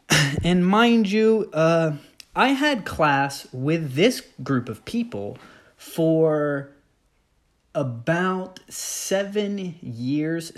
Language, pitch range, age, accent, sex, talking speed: English, 105-145 Hz, 20-39, American, male, 90 wpm